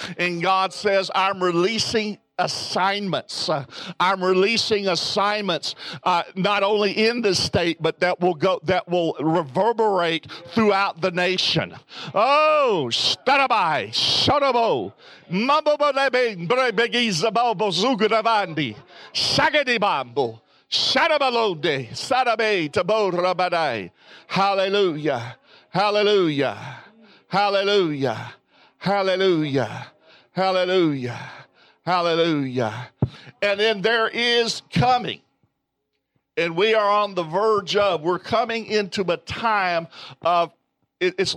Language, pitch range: English, 170-215 Hz